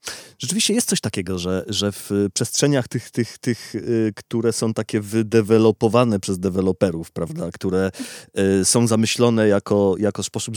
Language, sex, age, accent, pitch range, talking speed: Polish, male, 30-49, native, 95-115 Hz, 135 wpm